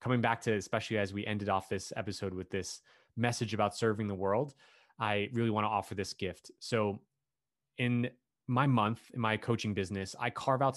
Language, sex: English, male